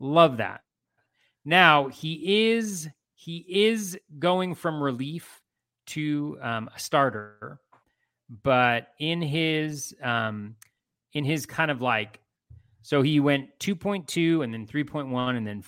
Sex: male